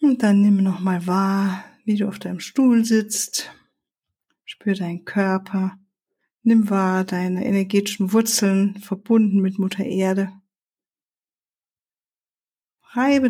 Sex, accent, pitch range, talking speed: female, German, 190-230 Hz, 110 wpm